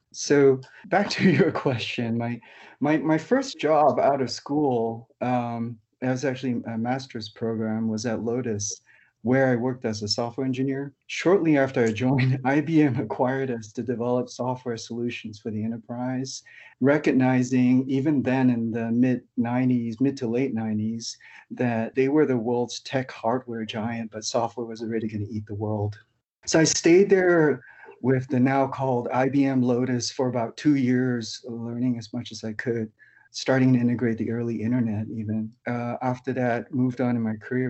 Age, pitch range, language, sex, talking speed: 30-49, 115-130 Hz, English, male, 170 wpm